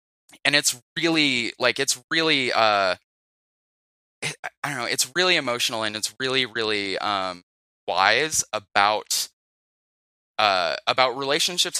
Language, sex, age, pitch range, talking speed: English, male, 20-39, 100-140 Hz, 115 wpm